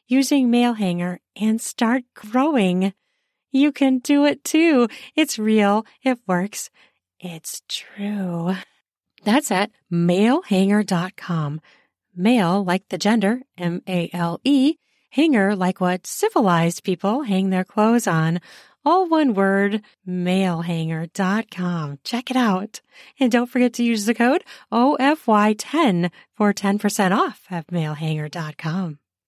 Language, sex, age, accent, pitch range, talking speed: English, female, 40-59, American, 180-255 Hz, 110 wpm